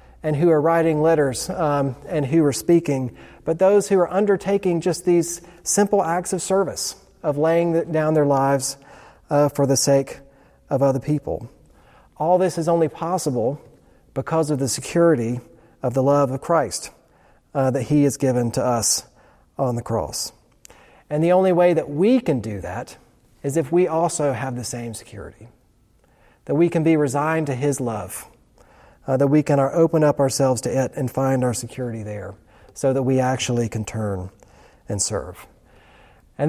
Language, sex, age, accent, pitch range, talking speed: English, male, 40-59, American, 130-170 Hz, 175 wpm